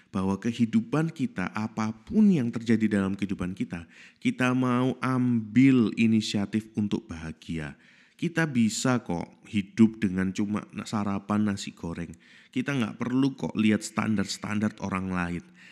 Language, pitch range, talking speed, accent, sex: Indonesian, 100-125 Hz, 120 wpm, native, male